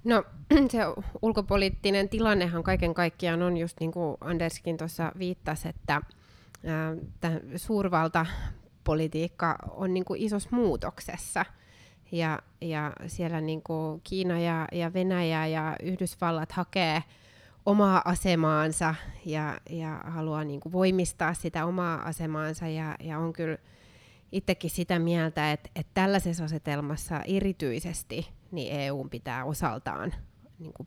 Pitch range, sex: 155-180 Hz, female